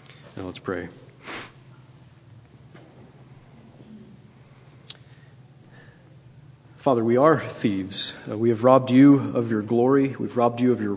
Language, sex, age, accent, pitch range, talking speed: English, male, 40-59, American, 115-135 Hz, 105 wpm